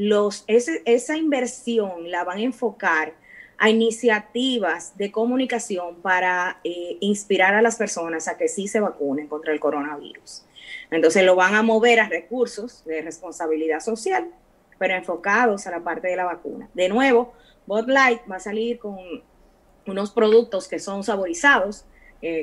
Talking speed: 150 wpm